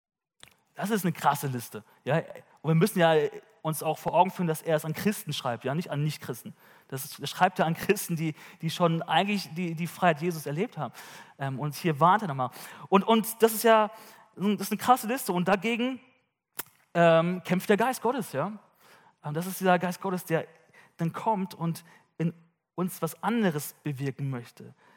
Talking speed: 200 wpm